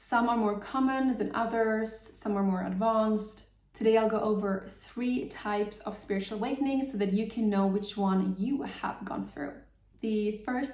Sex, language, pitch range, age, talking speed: female, English, 200-220 Hz, 20-39, 180 wpm